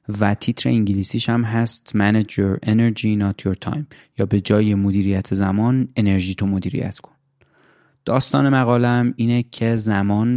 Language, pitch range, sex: Persian, 100-115 Hz, male